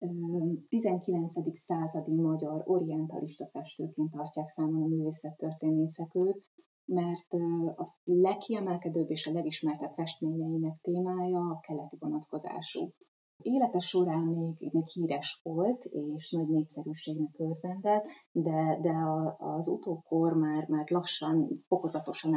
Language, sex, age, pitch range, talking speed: Hungarian, female, 30-49, 155-175 Hz, 105 wpm